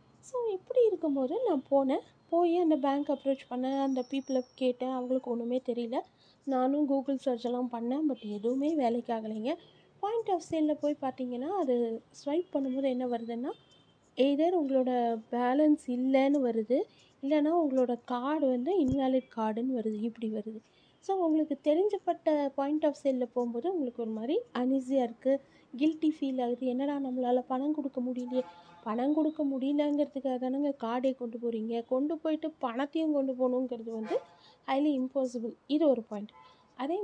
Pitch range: 245-295 Hz